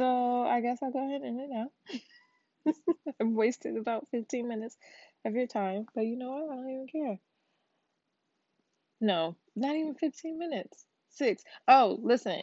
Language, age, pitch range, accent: English, 20-39, 185-240 Hz, American